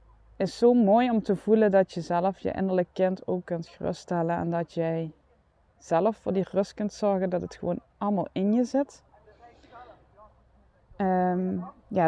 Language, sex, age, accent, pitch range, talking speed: Dutch, female, 20-39, Dutch, 165-195 Hz, 165 wpm